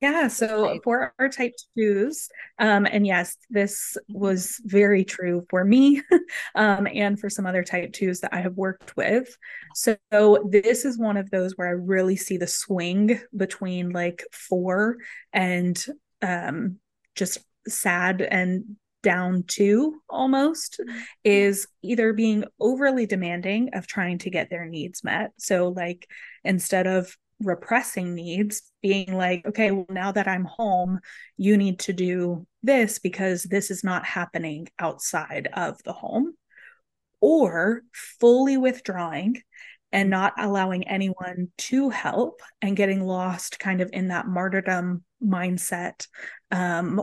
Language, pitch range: English, 185-220 Hz